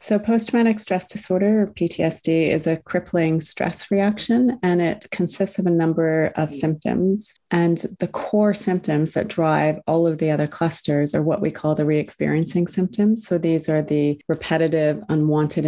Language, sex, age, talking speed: English, female, 30-49, 165 wpm